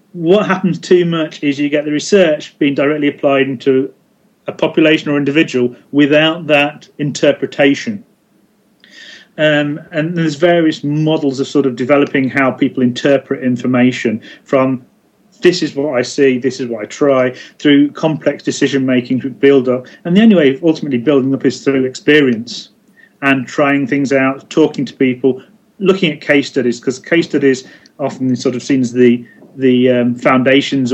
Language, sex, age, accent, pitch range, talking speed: English, male, 40-59, British, 130-160 Hz, 165 wpm